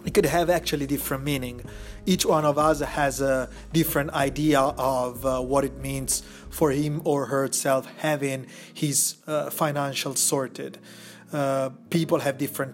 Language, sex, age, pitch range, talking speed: Italian, male, 30-49, 140-160 Hz, 150 wpm